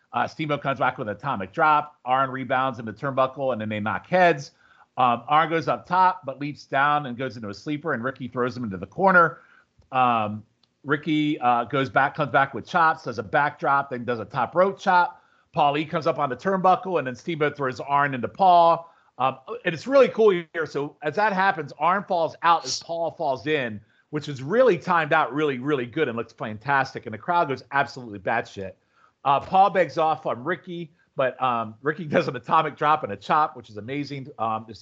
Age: 40-59